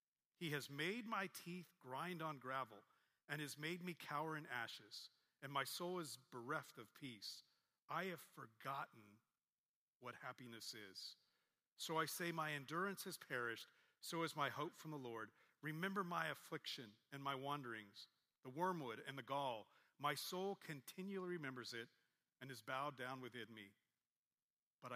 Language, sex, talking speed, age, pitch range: English, male, 155 wpm, 40-59, 120-160 Hz